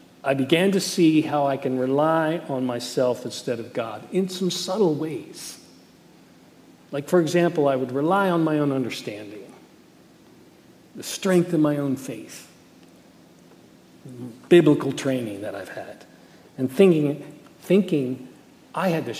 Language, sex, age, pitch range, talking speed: English, male, 50-69, 135-170 Hz, 140 wpm